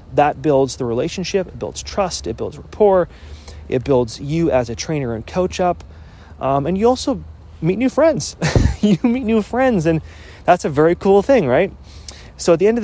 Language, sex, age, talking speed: English, male, 30-49, 195 wpm